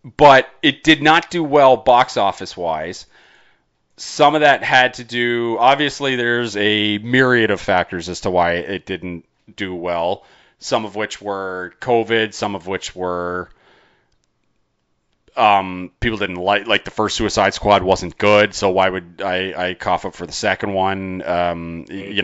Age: 30-49